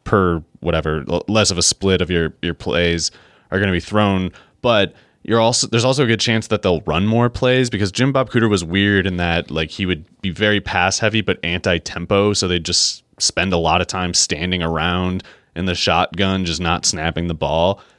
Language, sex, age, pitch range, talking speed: English, male, 30-49, 85-105 Hz, 210 wpm